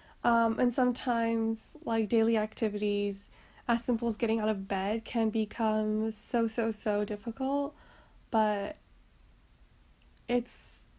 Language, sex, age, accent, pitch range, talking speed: English, female, 10-29, American, 215-255 Hz, 115 wpm